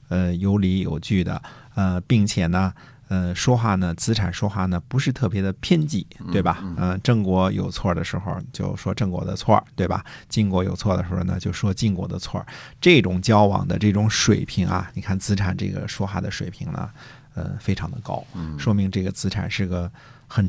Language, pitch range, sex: Chinese, 90-115 Hz, male